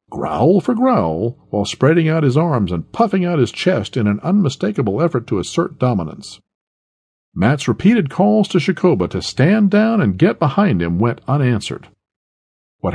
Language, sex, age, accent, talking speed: English, male, 50-69, American, 160 wpm